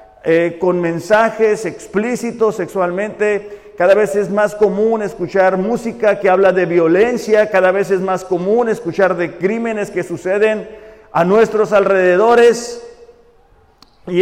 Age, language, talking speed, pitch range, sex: 50-69, Spanish, 125 wpm, 185-230 Hz, male